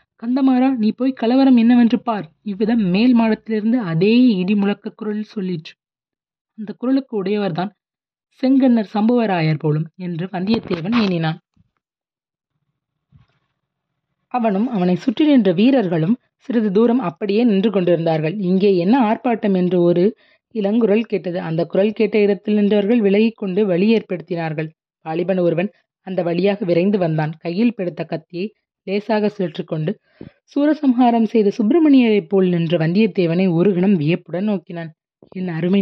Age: 20-39